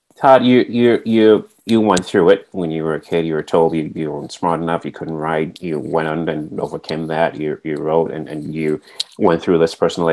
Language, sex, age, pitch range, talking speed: English, male, 30-49, 80-90 Hz, 230 wpm